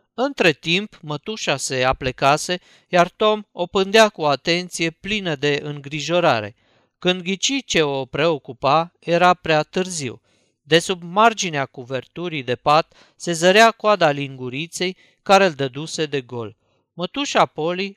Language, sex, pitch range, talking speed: Romanian, male, 140-195 Hz, 130 wpm